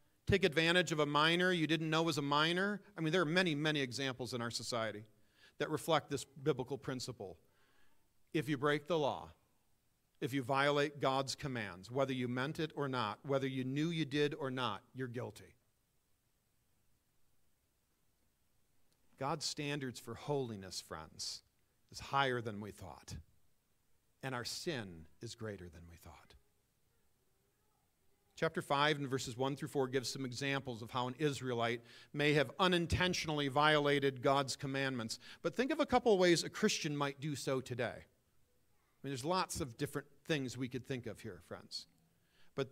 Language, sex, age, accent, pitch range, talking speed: English, male, 50-69, American, 120-155 Hz, 165 wpm